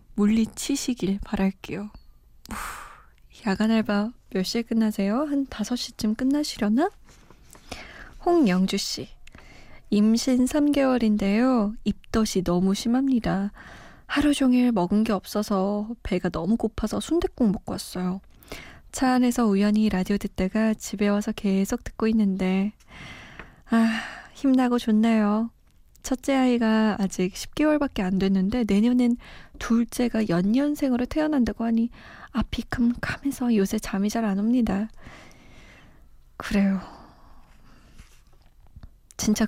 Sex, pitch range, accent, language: female, 200-250 Hz, native, Korean